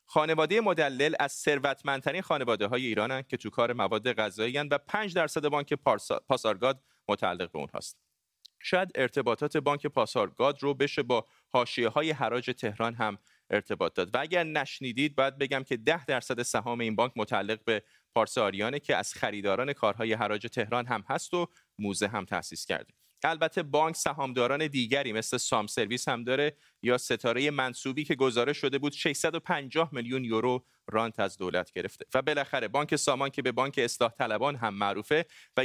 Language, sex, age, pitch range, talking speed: Persian, male, 30-49, 120-150 Hz, 160 wpm